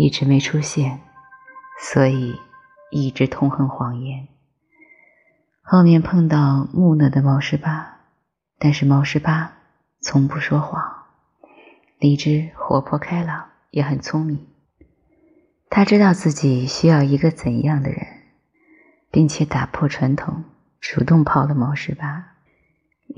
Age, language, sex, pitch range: 20-39, Chinese, female, 135-165 Hz